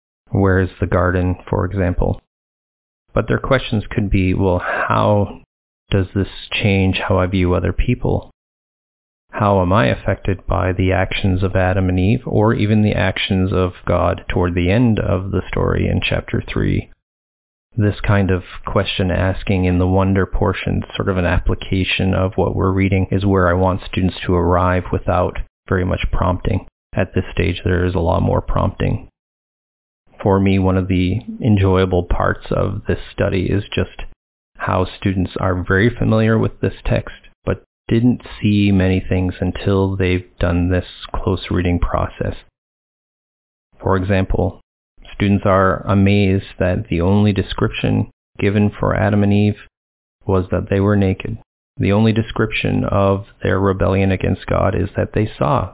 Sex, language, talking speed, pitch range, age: male, English, 160 wpm, 90-105 Hz, 30-49